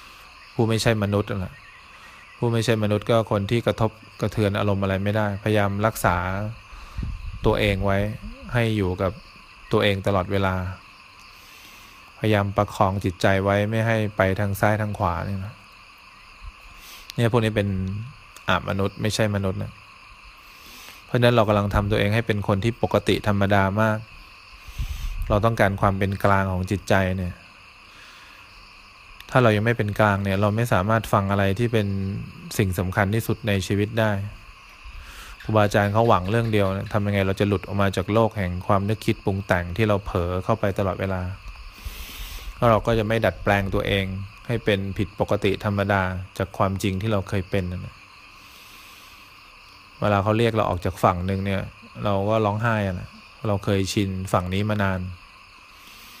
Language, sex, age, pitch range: English, male, 20-39, 95-110 Hz